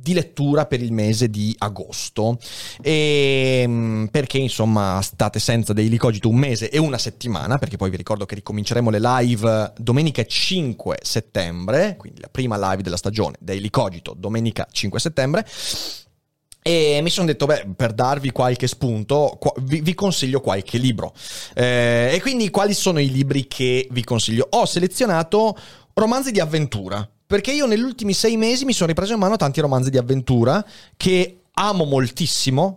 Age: 30-49